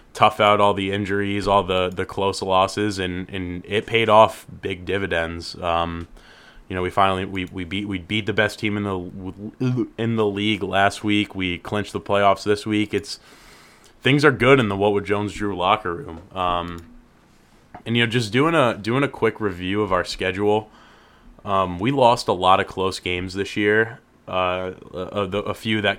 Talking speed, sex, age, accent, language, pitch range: 195 wpm, male, 20-39, American, English, 90-105 Hz